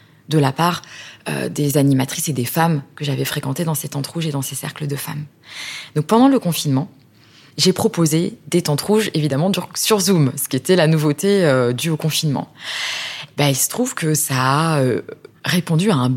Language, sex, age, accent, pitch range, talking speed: French, female, 20-39, French, 145-180 Hz, 200 wpm